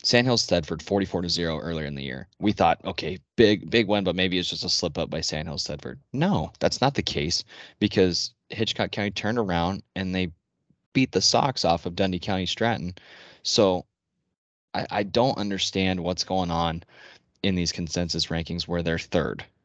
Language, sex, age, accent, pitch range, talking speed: English, male, 20-39, American, 85-100 Hz, 185 wpm